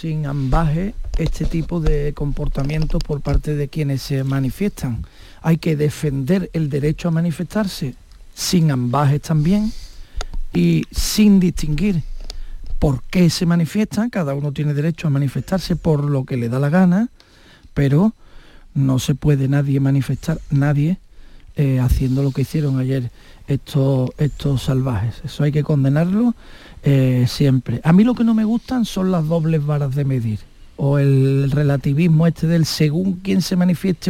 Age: 50-69